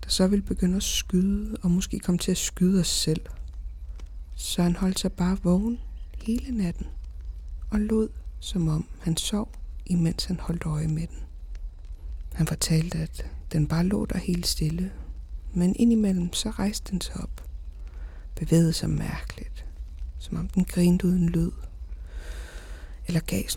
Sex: female